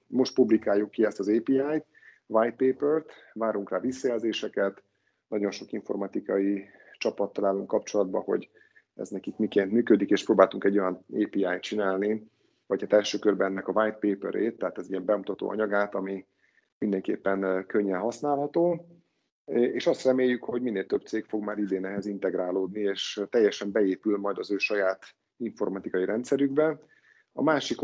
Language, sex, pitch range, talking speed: Hungarian, male, 100-120 Hz, 150 wpm